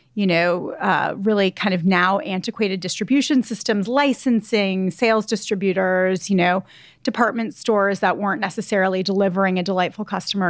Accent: American